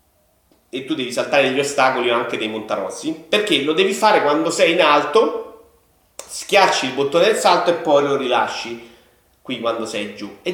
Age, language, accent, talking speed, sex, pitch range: 30-49, Italian, native, 180 wpm, male, 115-175 Hz